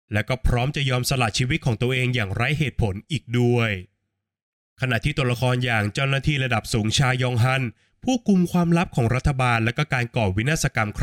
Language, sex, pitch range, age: Thai, male, 115-155 Hz, 20-39